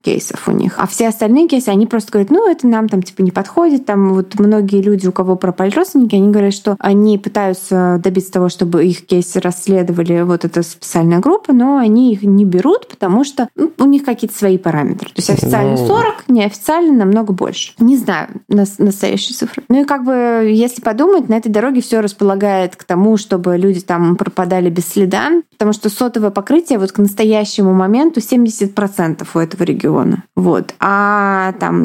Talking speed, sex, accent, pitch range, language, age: 185 wpm, female, native, 190-235 Hz, Russian, 20-39